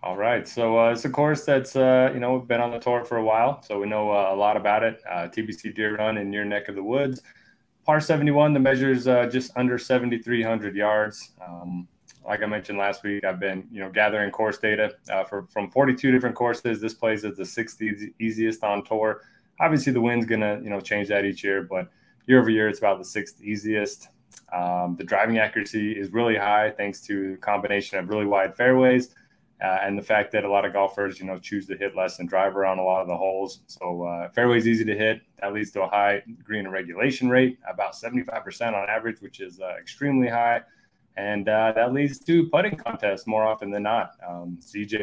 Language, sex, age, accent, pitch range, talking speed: English, male, 20-39, American, 100-120 Hz, 225 wpm